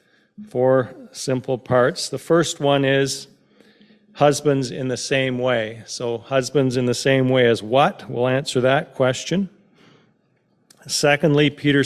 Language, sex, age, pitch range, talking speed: English, male, 40-59, 125-145 Hz, 130 wpm